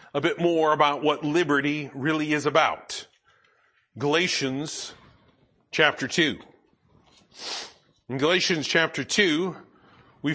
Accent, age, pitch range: American, 40-59, 150-185 Hz